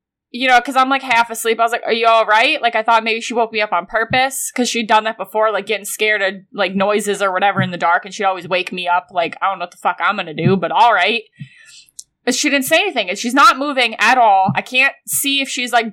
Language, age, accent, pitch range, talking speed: English, 20-39, American, 205-260 Hz, 280 wpm